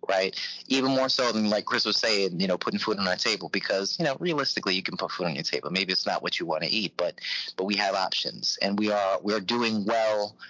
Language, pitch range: English, 95-110 Hz